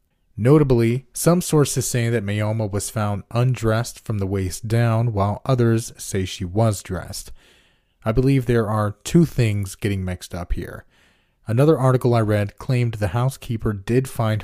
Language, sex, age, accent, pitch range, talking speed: English, male, 30-49, American, 100-120 Hz, 160 wpm